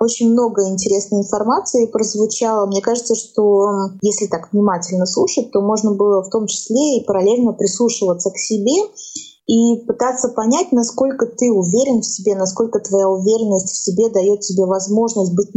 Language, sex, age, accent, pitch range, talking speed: Russian, female, 20-39, native, 190-230 Hz, 155 wpm